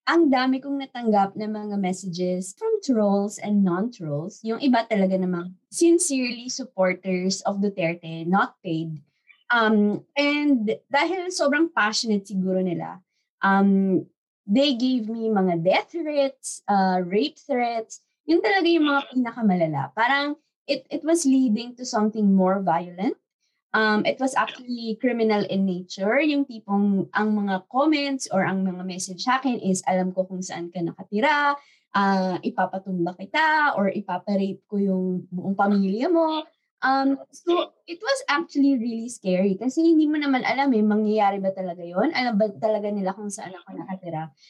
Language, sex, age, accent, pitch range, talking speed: Filipino, female, 20-39, native, 190-280 Hz, 150 wpm